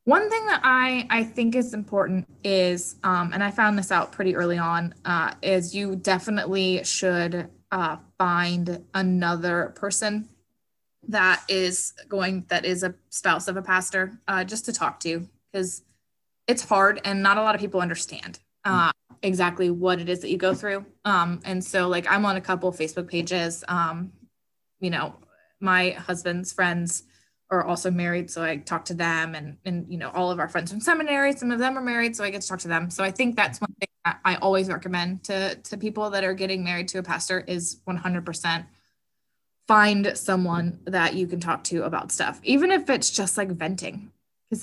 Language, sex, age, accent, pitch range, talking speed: English, female, 20-39, American, 175-200 Hz, 195 wpm